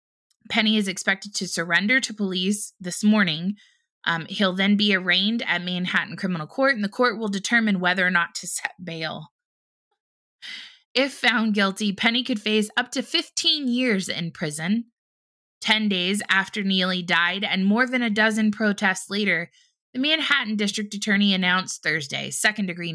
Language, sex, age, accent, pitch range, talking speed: English, female, 20-39, American, 175-230 Hz, 155 wpm